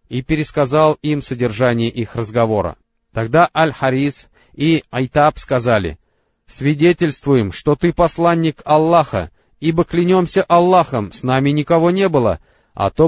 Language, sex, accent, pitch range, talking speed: Russian, male, native, 120-160 Hz, 120 wpm